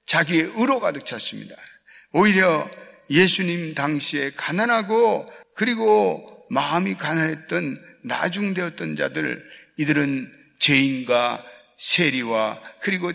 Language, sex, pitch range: Korean, male, 150-235 Hz